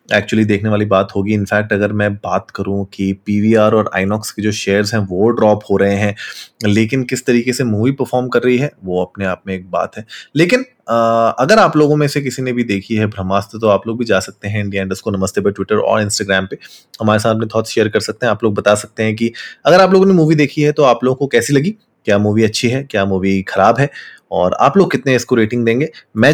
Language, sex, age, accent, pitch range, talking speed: Hindi, male, 20-39, native, 105-135 Hz, 255 wpm